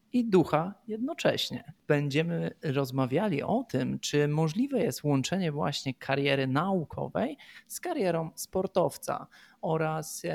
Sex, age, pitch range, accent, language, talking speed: male, 20-39, 135-175 Hz, native, Polish, 105 wpm